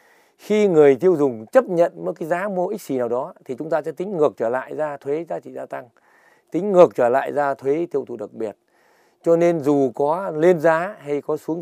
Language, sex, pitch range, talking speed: Vietnamese, male, 145-210 Hz, 245 wpm